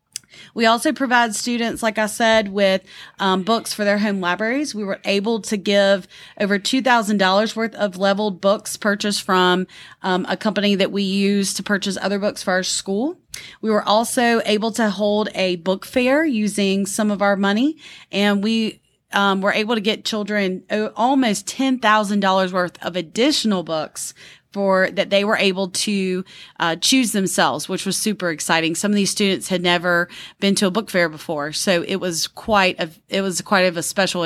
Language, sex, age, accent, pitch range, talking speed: English, female, 30-49, American, 185-220 Hz, 185 wpm